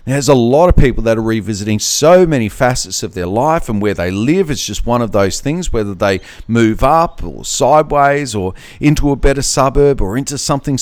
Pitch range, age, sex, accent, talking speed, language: 110-155 Hz, 40-59, male, Australian, 210 wpm, English